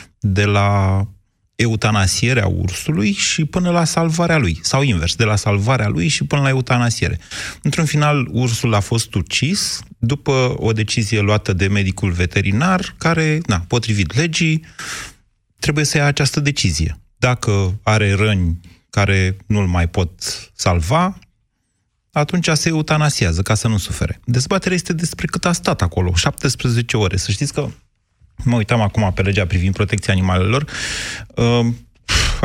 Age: 30-49